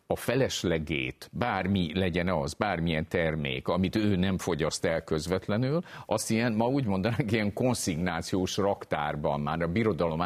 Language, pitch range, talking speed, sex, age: Hungarian, 85-110 Hz, 140 wpm, male, 50-69